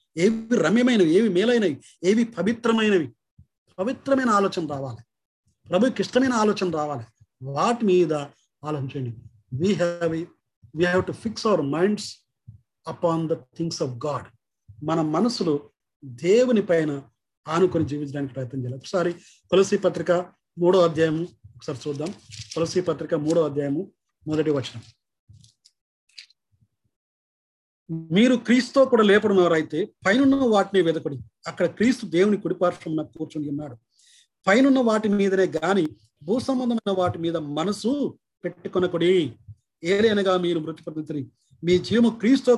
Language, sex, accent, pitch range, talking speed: Telugu, male, native, 145-210 Hz, 110 wpm